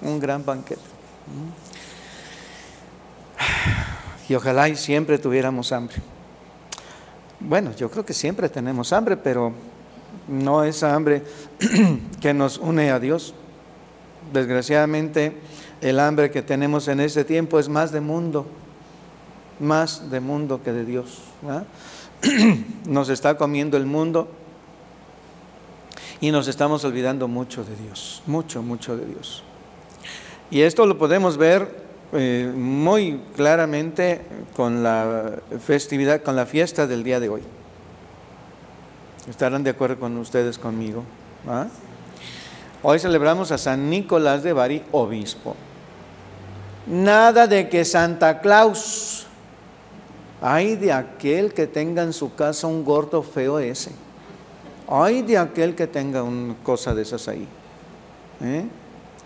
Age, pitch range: 50-69, 125-165 Hz